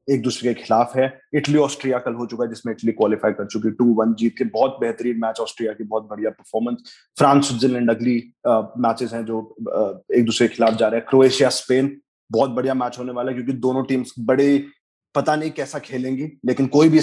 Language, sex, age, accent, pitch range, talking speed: Hindi, male, 30-49, native, 120-145 Hz, 220 wpm